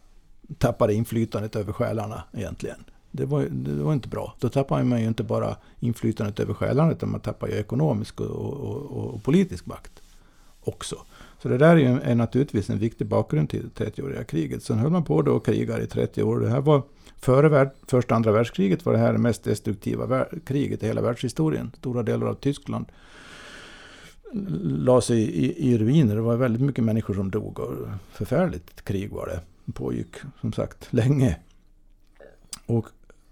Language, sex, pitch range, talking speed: Swedish, male, 105-135 Hz, 180 wpm